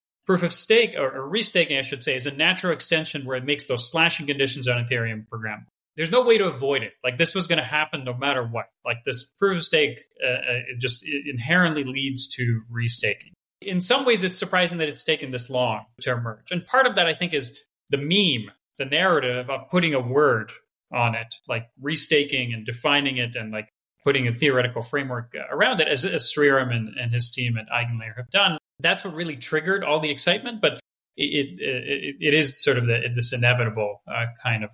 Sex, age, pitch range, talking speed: male, 30-49, 120-165 Hz, 200 wpm